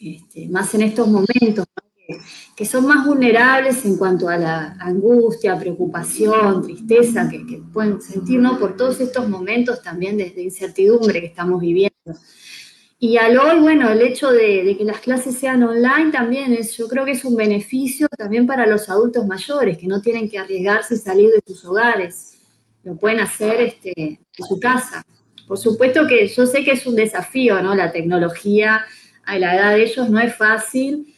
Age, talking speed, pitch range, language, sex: 20-39, 185 wpm, 190-245 Hz, Spanish, female